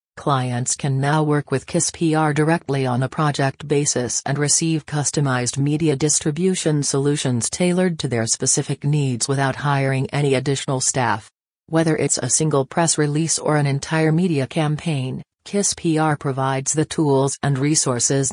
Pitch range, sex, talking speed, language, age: 135-160 Hz, female, 150 wpm, English, 40-59